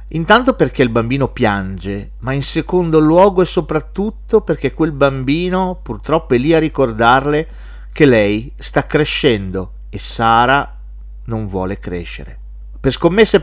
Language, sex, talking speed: Italian, male, 135 wpm